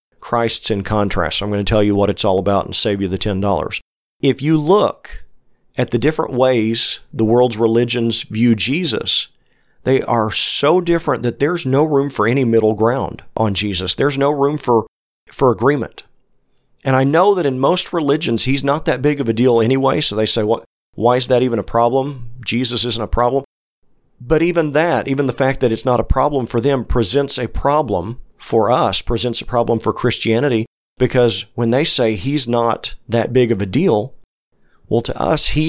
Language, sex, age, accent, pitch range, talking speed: English, male, 40-59, American, 110-135 Hz, 195 wpm